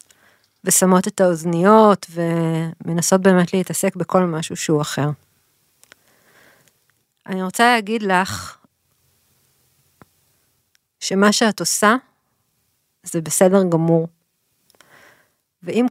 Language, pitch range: Hebrew, 170-205 Hz